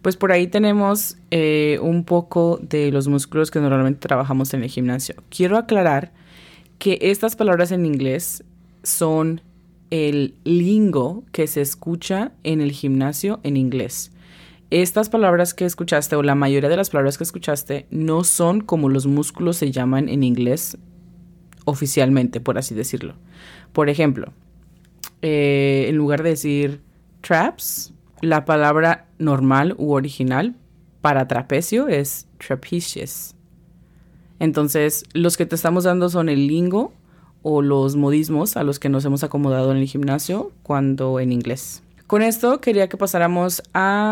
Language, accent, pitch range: English, Colombian, 140-175 Hz